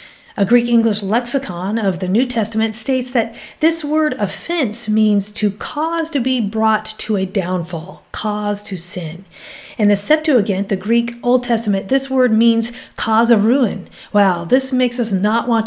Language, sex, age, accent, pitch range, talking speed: English, female, 40-59, American, 205-275 Hz, 165 wpm